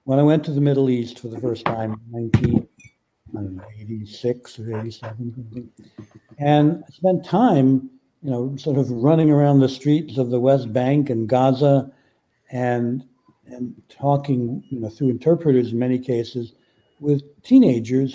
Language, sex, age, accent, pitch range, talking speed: English, male, 60-79, American, 125-145 Hz, 145 wpm